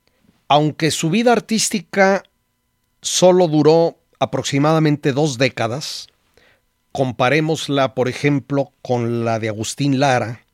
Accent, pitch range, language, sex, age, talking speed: Mexican, 125-165 Hz, Spanish, male, 50-69, 95 wpm